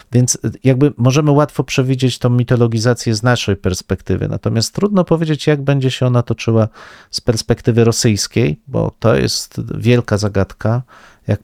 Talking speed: 140 wpm